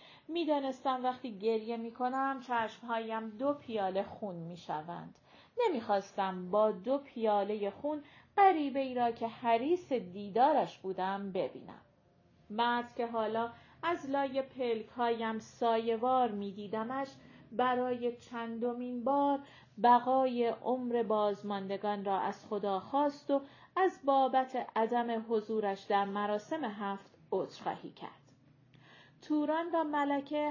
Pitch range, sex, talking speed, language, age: 210-275 Hz, female, 105 wpm, Persian, 40-59